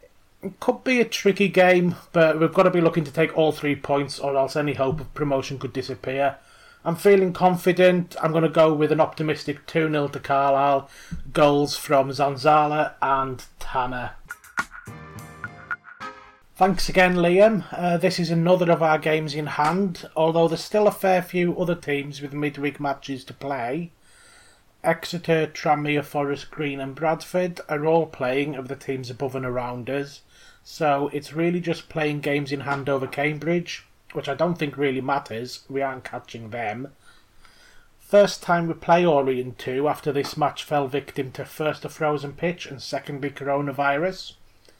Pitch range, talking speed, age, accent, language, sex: 140-170 Hz, 160 wpm, 30-49, British, English, male